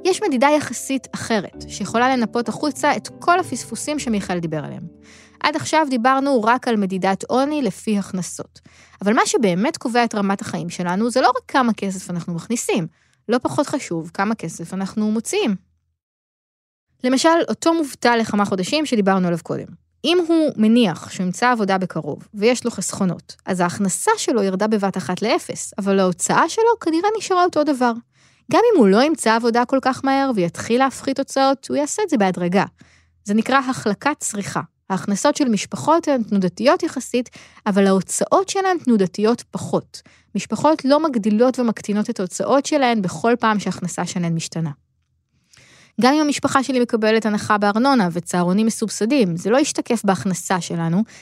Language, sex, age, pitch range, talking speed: Hebrew, female, 20-39, 190-270 Hz, 155 wpm